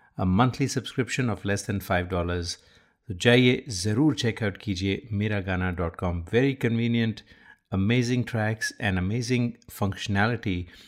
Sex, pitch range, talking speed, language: male, 100-115 Hz, 125 wpm, Hindi